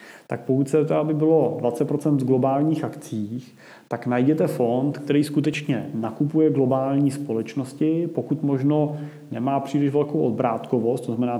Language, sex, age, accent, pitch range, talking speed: Czech, male, 30-49, native, 120-140 Hz, 135 wpm